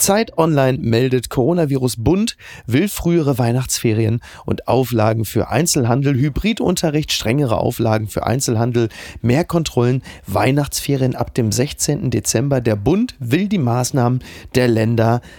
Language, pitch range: German, 115-150 Hz